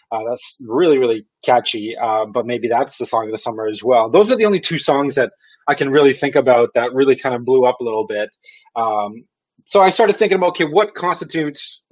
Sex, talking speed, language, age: male, 235 wpm, English, 20-39